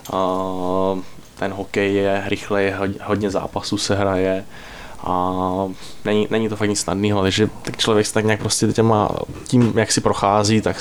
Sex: male